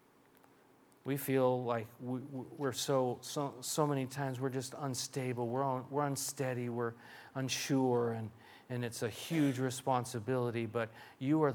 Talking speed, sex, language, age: 145 wpm, male, English, 40-59